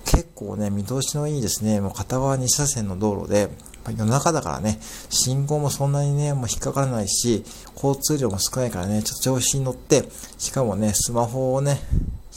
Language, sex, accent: Japanese, male, native